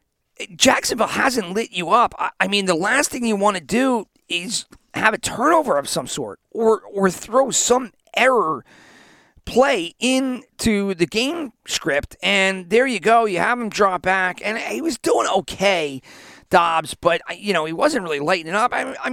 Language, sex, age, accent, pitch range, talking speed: English, male, 40-59, American, 185-255 Hz, 175 wpm